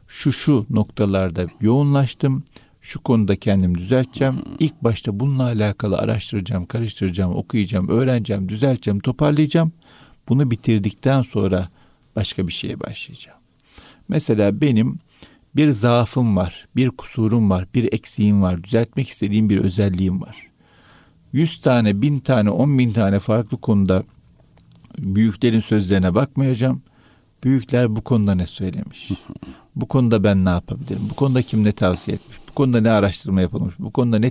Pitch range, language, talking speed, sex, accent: 100-130 Hz, Turkish, 135 wpm, male, native